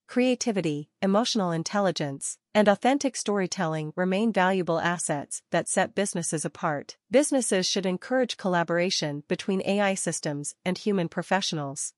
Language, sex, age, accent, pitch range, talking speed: English, female, 40-59, American, 165-205 Hz, 115 wpm